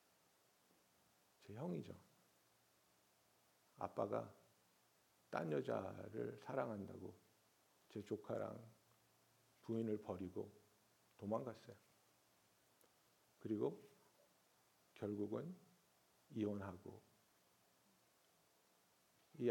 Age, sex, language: 50-69, male, Korean